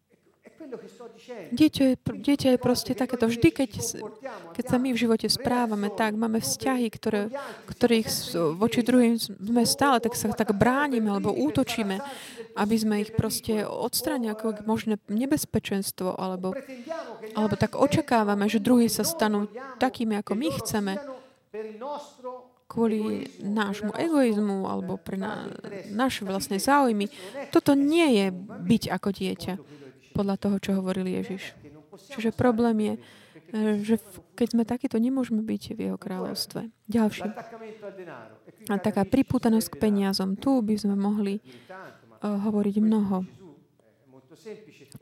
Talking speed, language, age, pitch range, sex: 130 wpm, Slovak, 30-49, 195-235 Hz, female